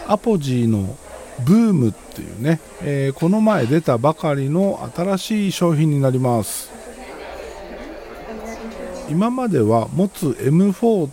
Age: 50-69